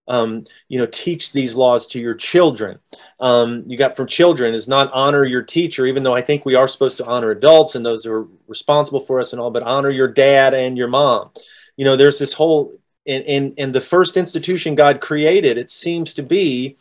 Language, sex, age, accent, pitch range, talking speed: English, male, 30-49, American, 125-150 Hz, 220 wpm